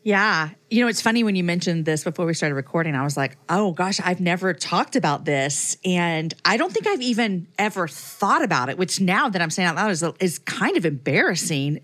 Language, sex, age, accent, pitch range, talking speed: English, female, 40-59, American, 160-205 Hz, 230 wpm